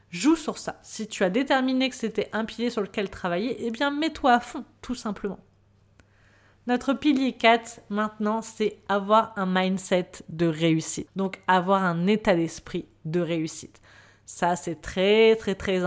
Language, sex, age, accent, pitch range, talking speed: French, female, 20-39, French, 180-220 Hz, 165 wpm